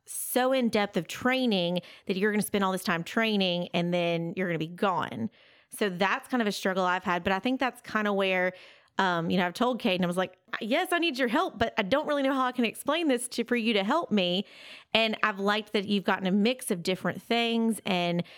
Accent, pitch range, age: American, 180-230 Hz, 30-49